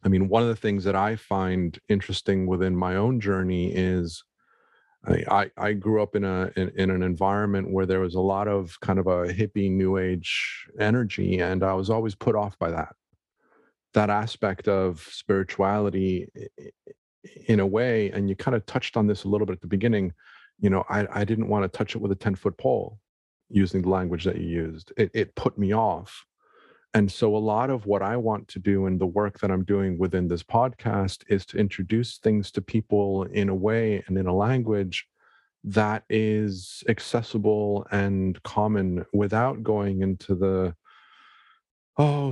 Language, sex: English, male